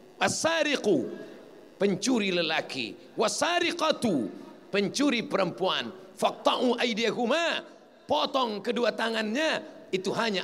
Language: Malay